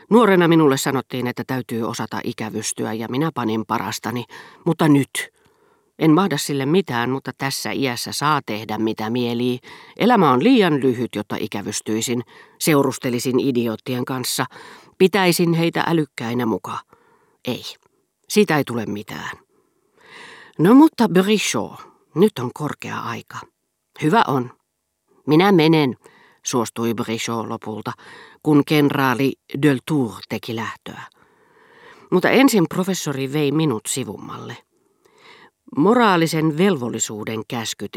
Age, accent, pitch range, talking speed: 40-59, native, 115-160 Hz, 110 wpm